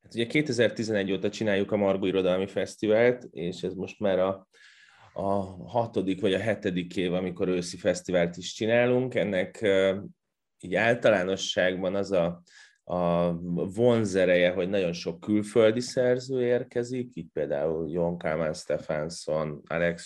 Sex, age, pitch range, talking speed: male, 30-49, 85-105 Hz, 130 wpm